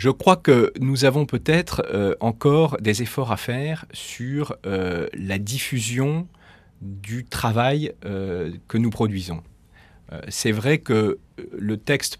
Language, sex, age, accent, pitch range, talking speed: French, male, 40-59, French, 95-130 Hz, 120 wpm